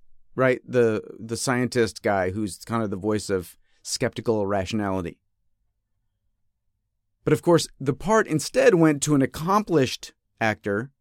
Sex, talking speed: male, 130 wpm